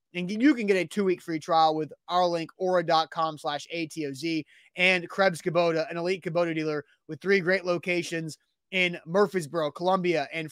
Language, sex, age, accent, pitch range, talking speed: English, male, 30-49, American, 165-205 Hz, 175 wpm